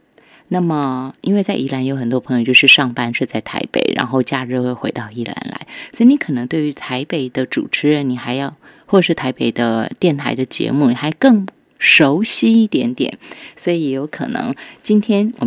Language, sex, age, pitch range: Chinese, female, 20-39, 125-180 Hz